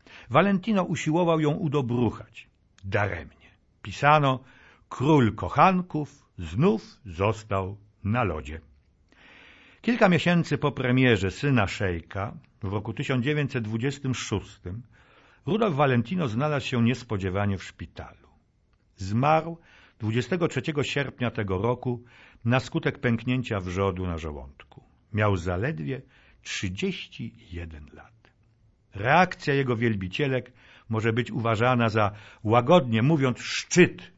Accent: native